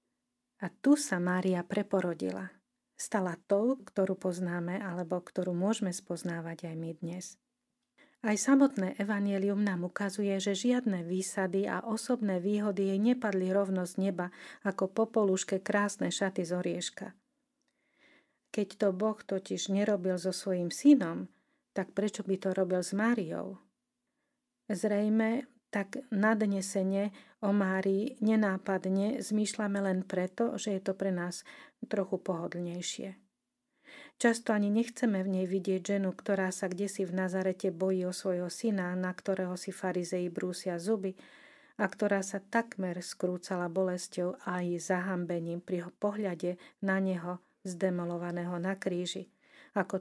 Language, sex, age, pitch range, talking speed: Slovak, female, 40-59, 185-220 Hz, 130 wpm